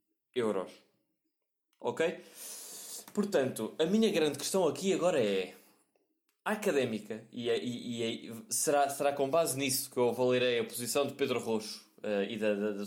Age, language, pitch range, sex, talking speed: 20-39, Portuguese, 125-190 Hz, male, 155 wpm